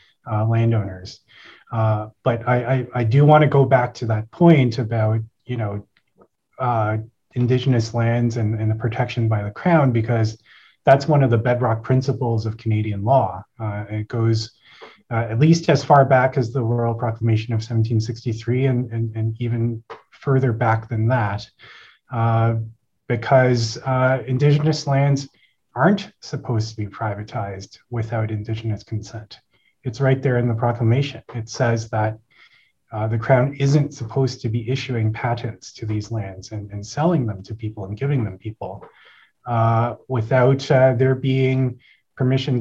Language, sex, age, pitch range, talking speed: English, male, 30-49, 110-130 Hz, 155 wpm